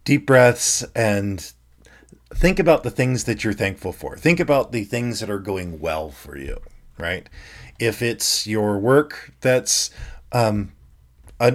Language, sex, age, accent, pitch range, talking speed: English, male, 40-59, American, 85-115 Hz, 150 wpm